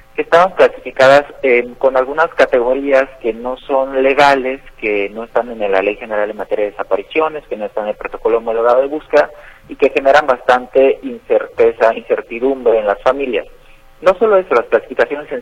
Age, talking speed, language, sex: 50-69, 180 wpm, Spanish, male